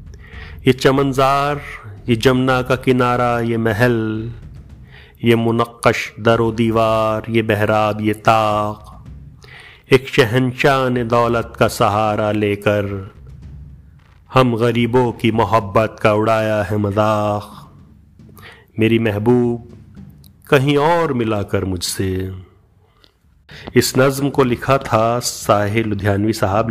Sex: male